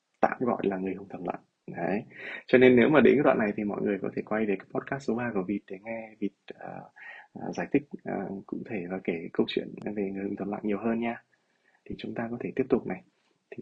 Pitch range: 100-120 Hz